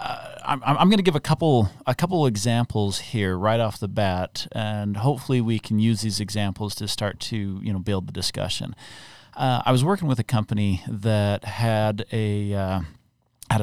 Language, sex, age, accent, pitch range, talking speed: English, male, 40-59, American, 105-130 Hz, 190 wpm